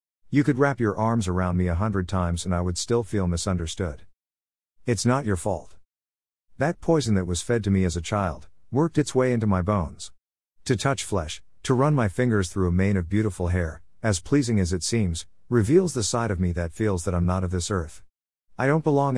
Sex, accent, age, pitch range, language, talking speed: male, American, 50-69, 85-120 Hz, English, 220 wpm